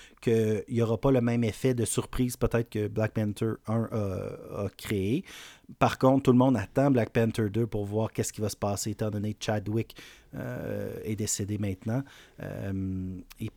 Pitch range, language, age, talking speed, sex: 105-125 Hz, French, 30-49, 185 wpm, male